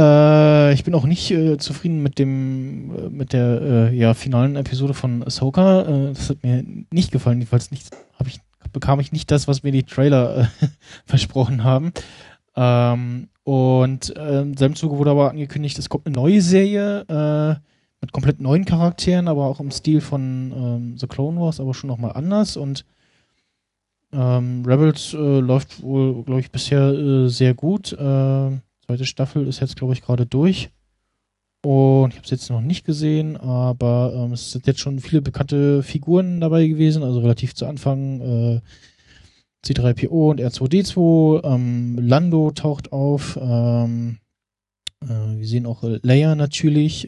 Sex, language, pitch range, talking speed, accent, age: male, German, 125-150 Hz, 160 wpm, German, 20-39